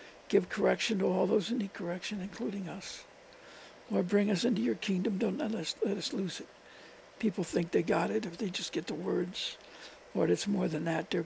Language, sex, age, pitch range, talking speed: English, male, 60-79, 180-215 Hz, 215 wpm